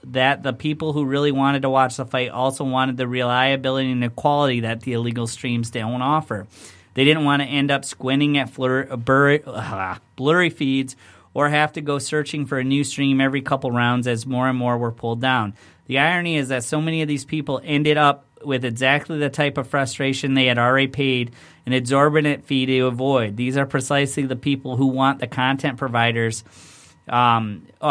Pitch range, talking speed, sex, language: 120-140 Hz, 190 wpm, male, English